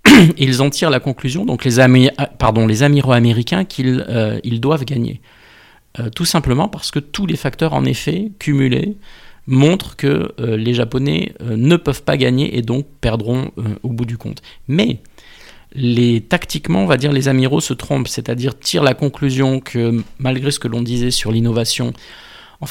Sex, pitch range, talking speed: male, 115-140 Hz, 180 wpm